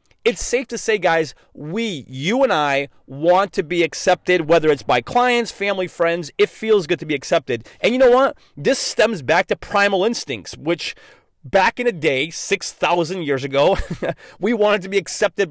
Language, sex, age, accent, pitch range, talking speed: English, male, 30-49, American, 170-230 Hz, 185 wpm